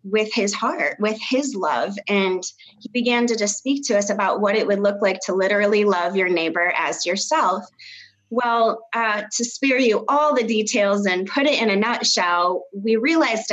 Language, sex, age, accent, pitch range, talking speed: English, female, 20-39, American, 185-225 Hz, 190 wpm